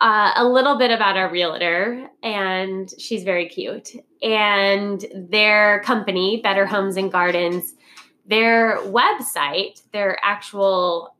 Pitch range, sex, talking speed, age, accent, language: 185-235 Hz, female, 120 wpm, 10-29, American, English